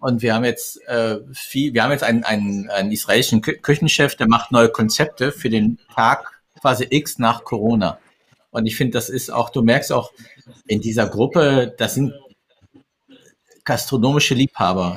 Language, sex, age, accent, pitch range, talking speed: German, male, 50-69, German, 120-145 Hz, 165 wpm